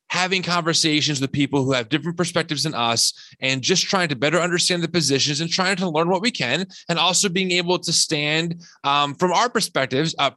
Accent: American